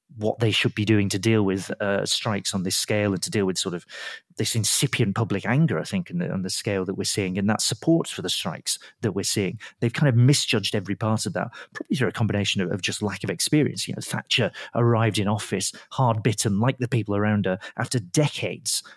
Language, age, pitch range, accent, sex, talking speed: English, 40-59, 105-130 Hz, British, male, 235 wpm